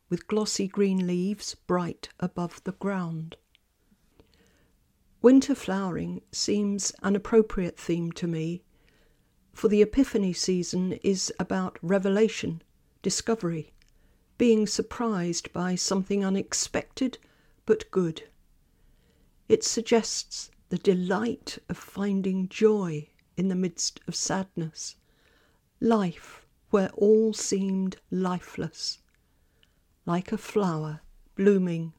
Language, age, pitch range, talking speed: English, 50-69, 170-205 Hz, 100 wpm